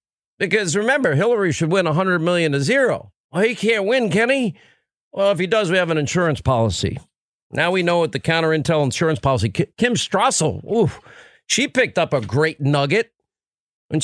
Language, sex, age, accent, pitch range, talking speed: English, male, 50-69, American, 160-215 Hz, 185 wpm